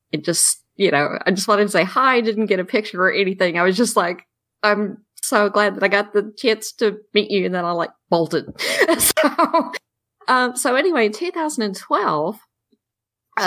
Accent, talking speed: American, 190 wpm